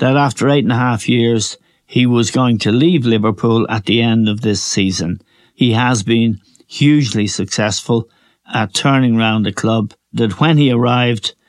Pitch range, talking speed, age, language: 110-135 Hz, 170 wpm, 60-79, English